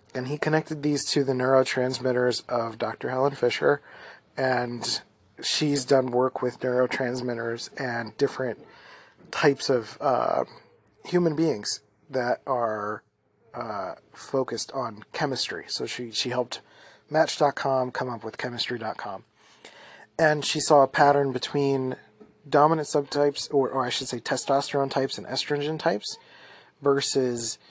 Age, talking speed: 30-49, 125 wpm